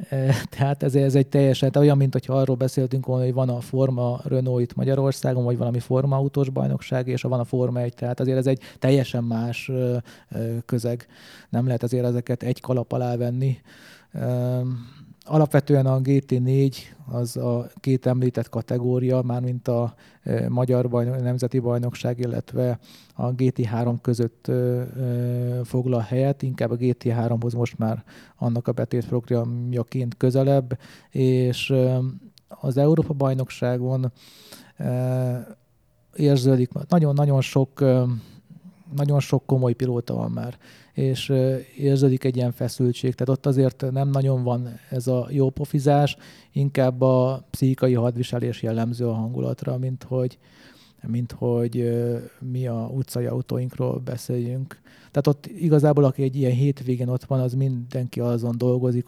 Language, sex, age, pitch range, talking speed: Hungarian, male, 30-49, 120-135 Hz, 130 wpm